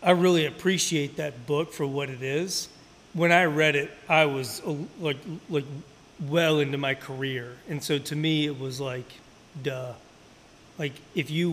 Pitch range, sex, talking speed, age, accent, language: 140-170 Hz, male, 165 wpm, 30-49, American, English